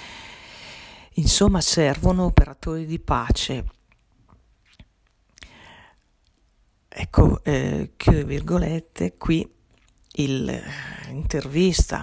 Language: Italian